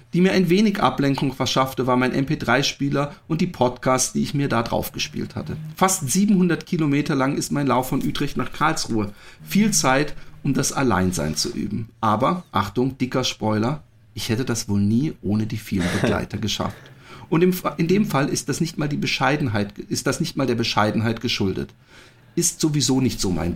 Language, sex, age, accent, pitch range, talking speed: German, male, 40-59, German, 120-160 Hz, 190 wpm